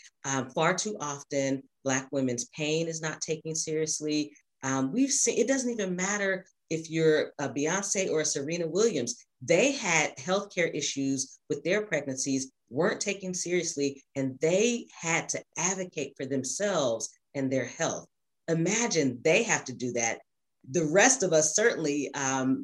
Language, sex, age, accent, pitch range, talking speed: English, female, 40-59, American, 135-175 Hz, 155 wpm